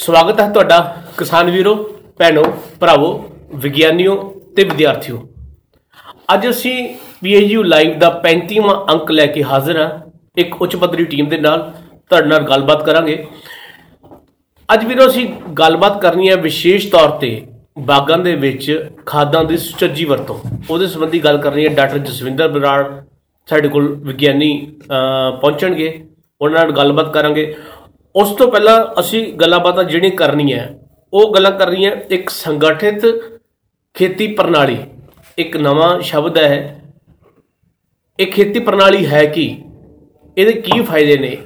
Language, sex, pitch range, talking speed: Punjabi, male, 145-185 Hz, 125 wpm